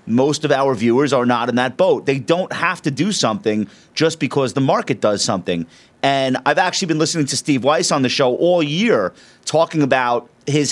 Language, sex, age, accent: English, male, 30-49, American